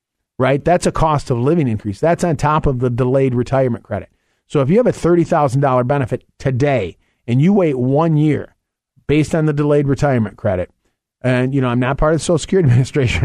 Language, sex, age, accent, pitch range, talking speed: English, male, 40-59, American, 120-150 Hz, 215 wpm